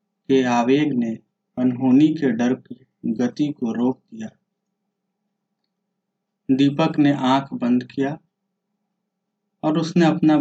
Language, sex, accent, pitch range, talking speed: Hindi, male, native, 130-195 Hz, 110 wpm